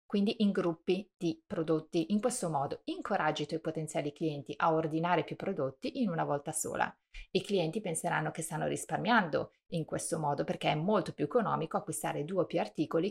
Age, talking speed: 30-49, 185 wpm